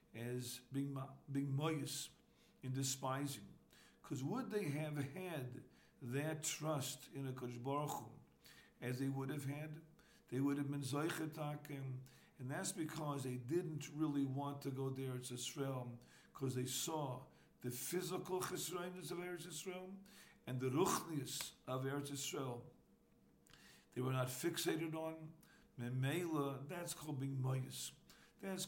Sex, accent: male, American